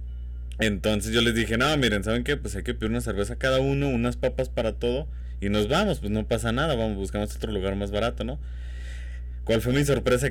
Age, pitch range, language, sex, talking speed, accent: 20-39, 85-115 Hz, Spanish, male, 220 wpm, Mexican